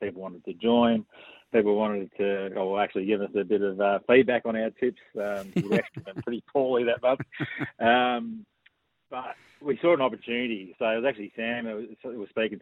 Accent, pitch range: Australian, 100-120 Hz